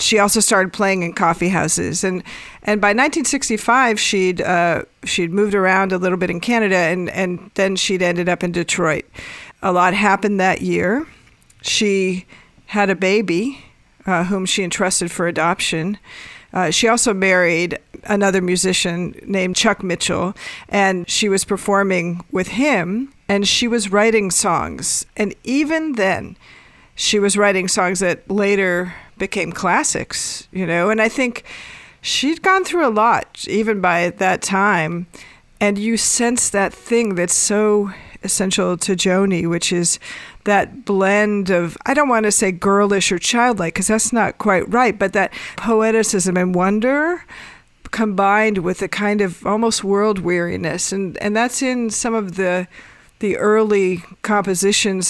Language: English